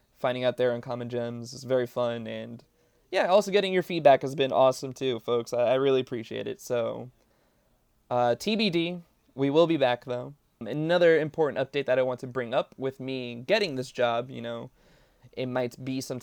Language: English